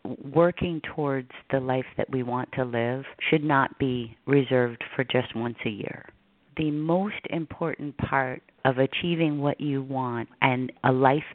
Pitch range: 130-155 Hz